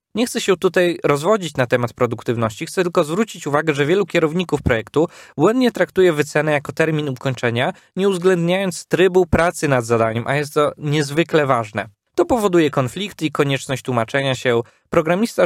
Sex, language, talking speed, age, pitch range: male, Polish, 160 wpm, 20-39, 125-170 Hz